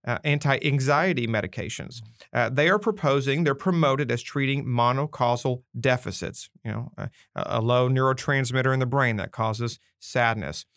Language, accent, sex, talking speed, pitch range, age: English, American, male, 140 wpm, 120-150 Hz, 40-59